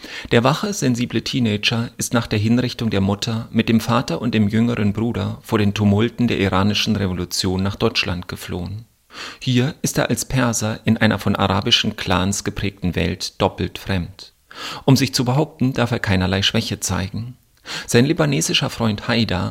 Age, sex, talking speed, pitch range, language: 40-59, male, 165 wpm, 100-120 Hz, German